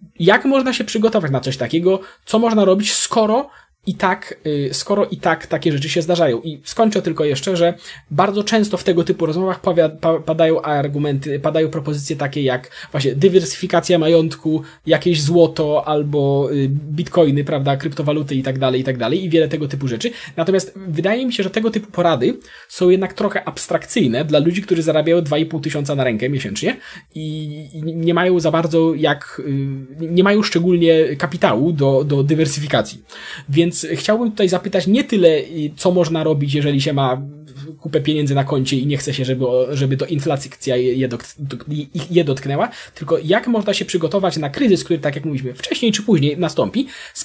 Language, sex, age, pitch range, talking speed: Polish, male, 20-39, 145-185 Hz, 170 wpm